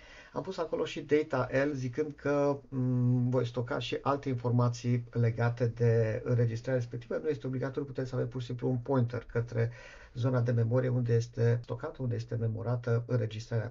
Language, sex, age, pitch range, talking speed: Romanian, male, 50-69, 120-145 Hz, 175 wpm